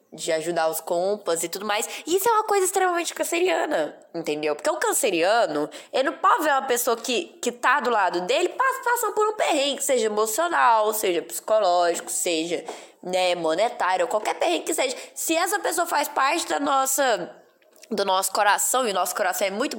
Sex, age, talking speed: female, 10-29, 185 wpm